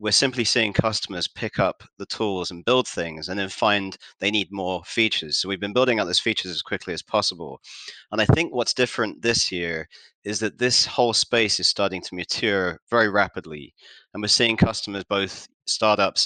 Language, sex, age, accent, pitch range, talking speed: English, male, 30-49, British, 90-110 Hz, 195 wpm